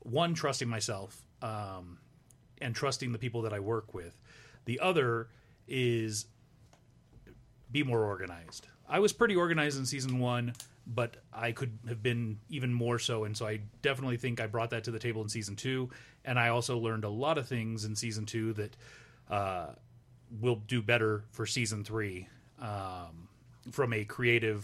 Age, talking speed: 30-49, 170 wpm